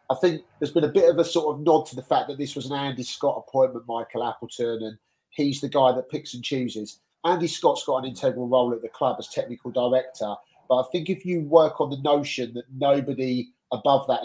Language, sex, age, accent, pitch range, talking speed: English, male, 30-49, British, 120-145 Hz, 235 wpm